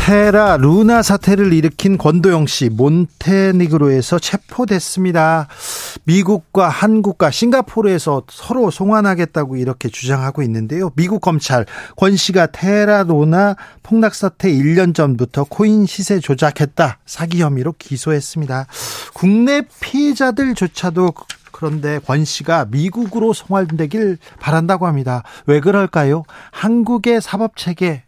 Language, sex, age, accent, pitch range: Korean, male, 40-59, native, 150-200 Hz